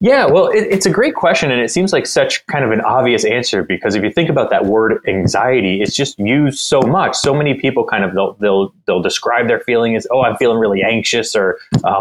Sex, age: male, 20-39